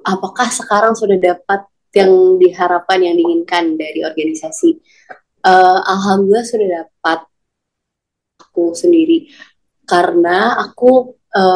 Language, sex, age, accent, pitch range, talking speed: Indonesian, female, 20-39, native, 175-220 Hz, 95 wpm